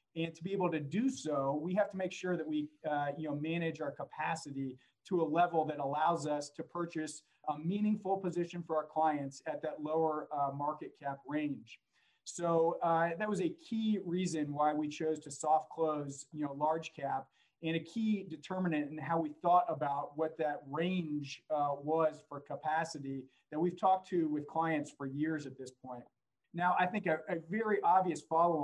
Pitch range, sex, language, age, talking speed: 145-165 Hz, male, English, 40-59, 195 wpm